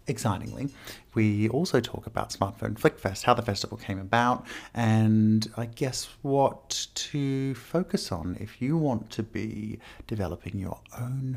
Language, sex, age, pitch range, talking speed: English, male, 30-49, 95-120 Hz, 140 wpm